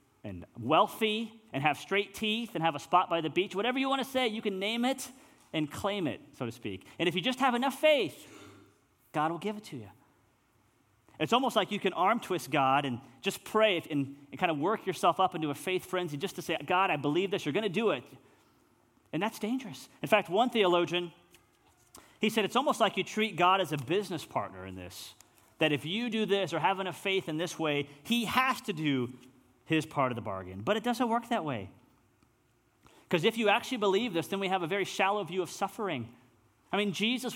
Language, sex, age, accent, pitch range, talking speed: English, male, 30-49, American, 135-215 Hz, 225 wpm